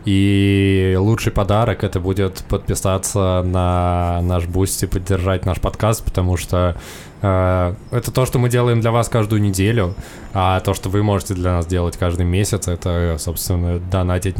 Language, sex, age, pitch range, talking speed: Russian, male, 20-39, 90-110 Hz, 160 wpm